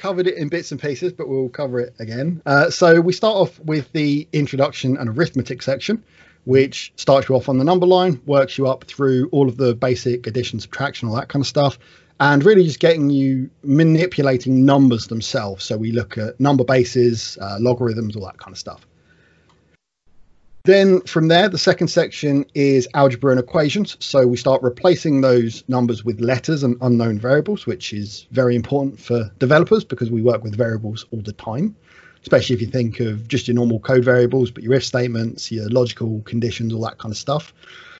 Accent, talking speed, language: British, 195 wpm, English